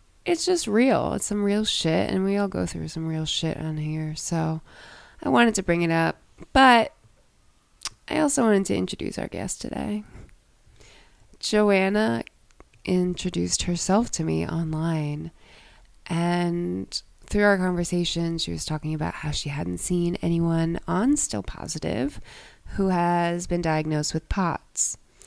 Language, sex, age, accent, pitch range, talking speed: English, female, 20-39, American, 155-190 Hz, 145 wpm